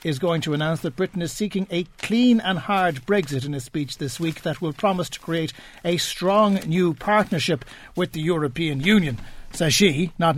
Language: English